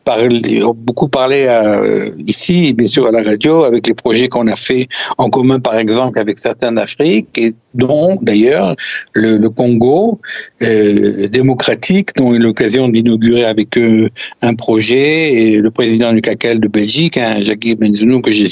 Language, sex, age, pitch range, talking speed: French, male, 60-79, 110-130 Hz, 160 wpm